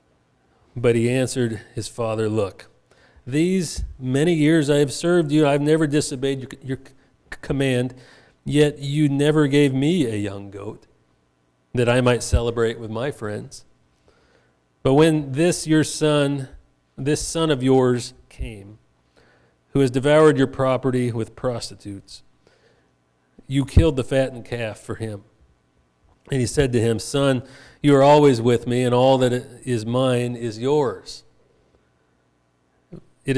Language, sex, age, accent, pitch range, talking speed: English, male, 40-59, American, 100-135 Hz, 135 wpm